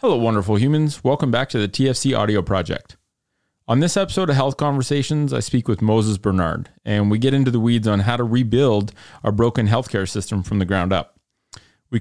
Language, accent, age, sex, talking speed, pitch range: English, American, 30-49, male, 200 wpm, 105-135 Hz